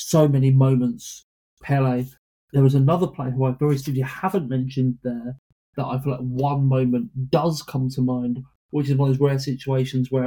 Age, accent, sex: 30-49, British, male